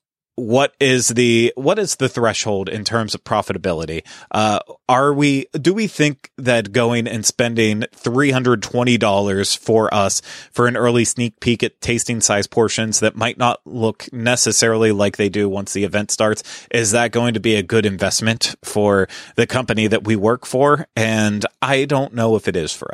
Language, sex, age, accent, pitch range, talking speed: English, male, 30-49, American, 105-125 Hz, 180 wpm